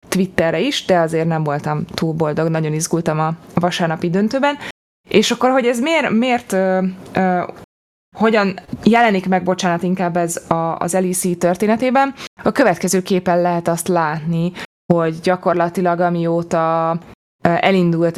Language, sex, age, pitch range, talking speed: Hungarian, female, 20-39, 165-195 Hz, 125 wpm